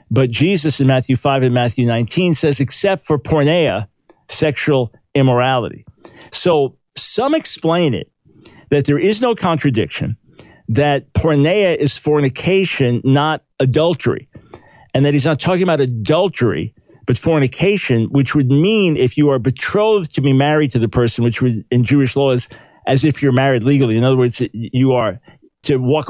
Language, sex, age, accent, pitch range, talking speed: English, male, 50-69, American, 125-155 Hz, 155 wpm